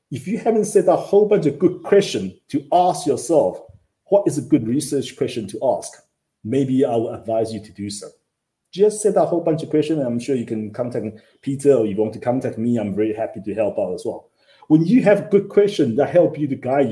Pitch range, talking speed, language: 115-170 Hz, 240 wpm, English